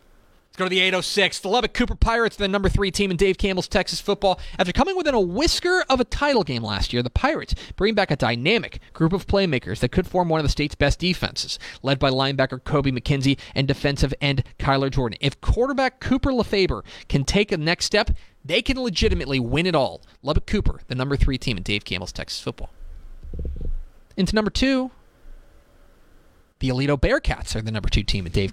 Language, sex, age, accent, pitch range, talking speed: English, male, 30-49, American, 130-210 Hz, 205 wpm